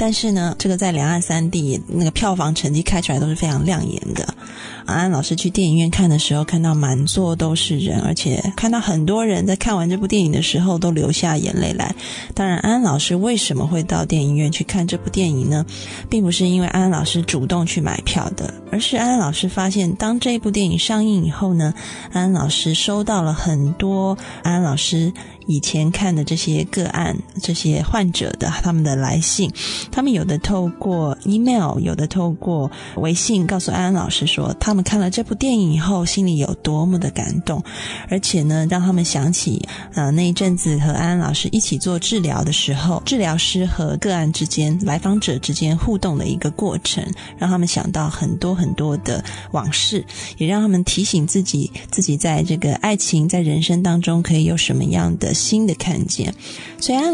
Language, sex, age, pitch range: Chinese, female, 20-39, 160-190 Hz